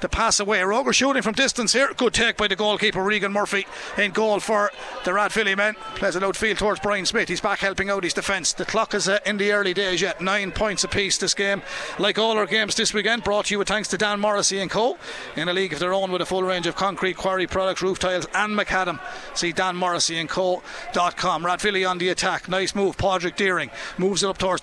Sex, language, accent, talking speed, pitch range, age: male, English, Irish, 230 wpm, 185-215 Hz, 30-49